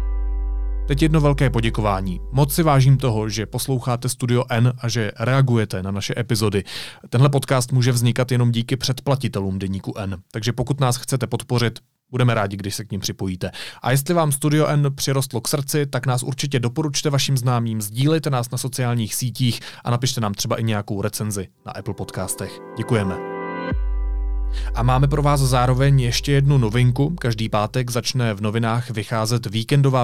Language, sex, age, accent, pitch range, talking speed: Czech, male, 30-49, native, 110-135 Hz, 170 wpm